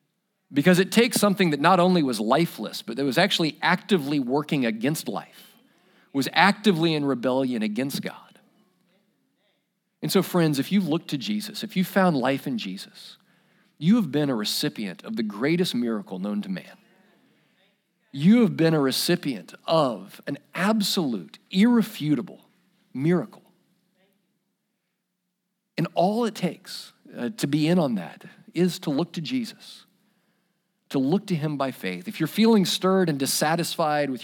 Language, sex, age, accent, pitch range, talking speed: English, male, 40-59, American, 155-205 Hz, 150 wpm